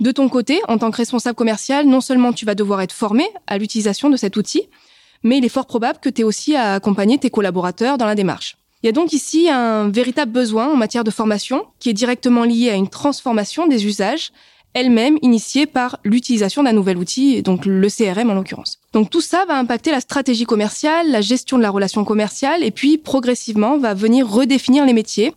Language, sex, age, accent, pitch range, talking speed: French, female, 20-39, French, 210-265 Hz, 215 wpm